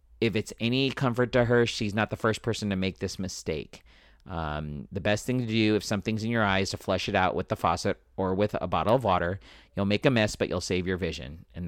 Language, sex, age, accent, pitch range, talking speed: English, male, 40-59, American, 90-130 Hz, 255 wpm